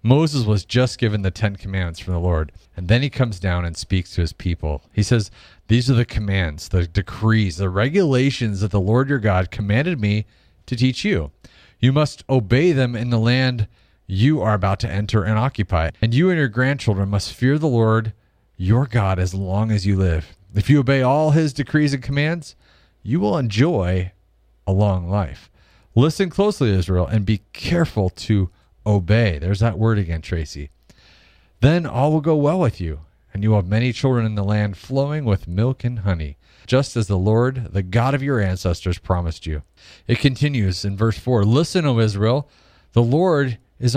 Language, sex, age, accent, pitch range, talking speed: English, male, 40-59, American, 95-130 Hz, 190 wpm